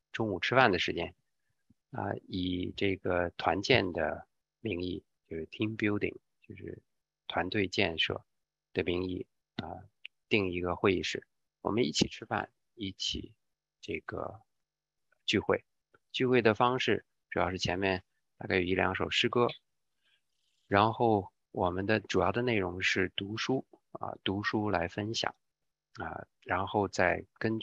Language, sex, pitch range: English, male, 90-110 Hz